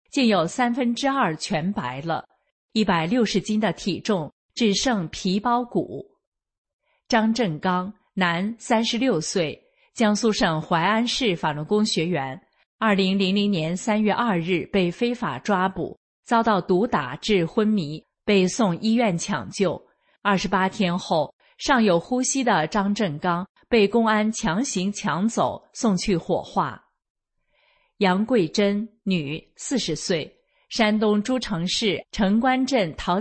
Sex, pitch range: female, 180-225 Hz